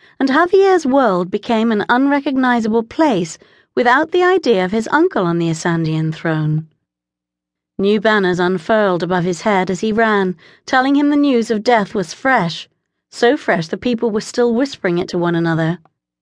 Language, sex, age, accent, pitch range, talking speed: English, female, 40-59, British, 175-235 Hz, 165 wpm